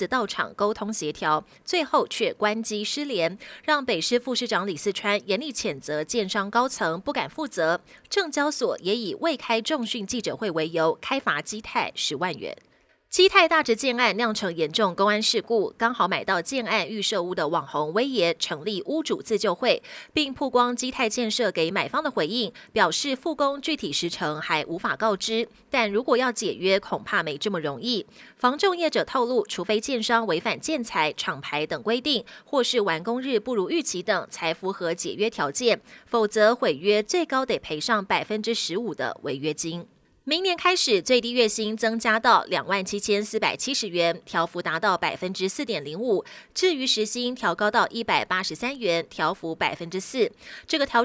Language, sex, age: Chinese, female, 20-39